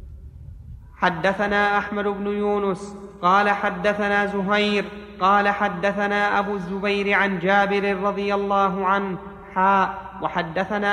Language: Arabic